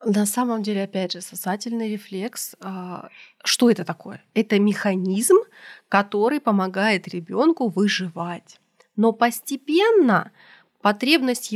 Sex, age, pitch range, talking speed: female, 20-39, 195-235 Hz, 100 wpm